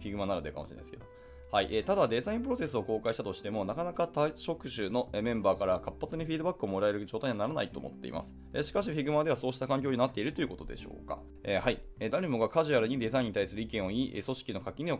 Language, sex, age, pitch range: Japanese, male, 20-39, 95-145 Hz